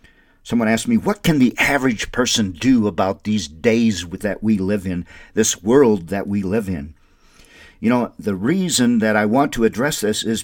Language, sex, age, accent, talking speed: English, male, 50-69, American, 190 wpm